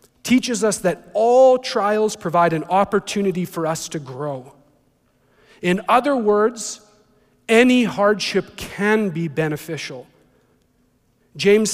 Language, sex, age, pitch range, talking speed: English, male, 40-59, 155-210 Hz, 105 wpm